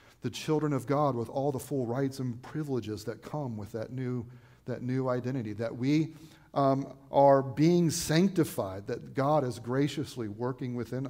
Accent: American